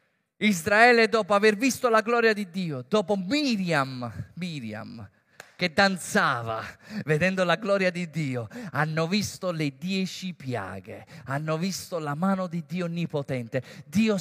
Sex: male